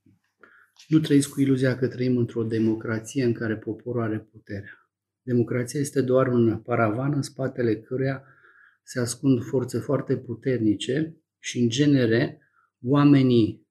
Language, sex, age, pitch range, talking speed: Romanian, male, 30-49, 115-140 Hz, 130 wpm